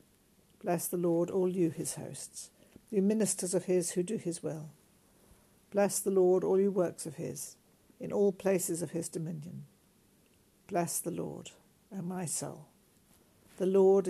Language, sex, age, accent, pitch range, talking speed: English, female, 60-79, British, 170-195 Hz, 160 wpm